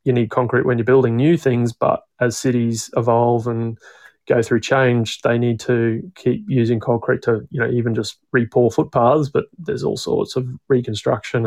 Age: 20-39